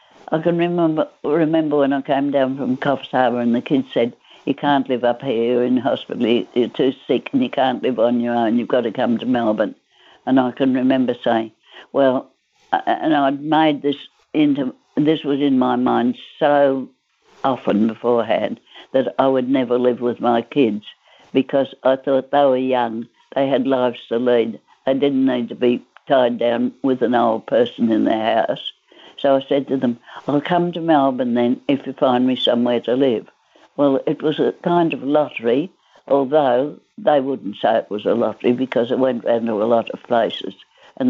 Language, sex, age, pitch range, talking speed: English, female, 60-79, 125-155 Hz, 195 wpm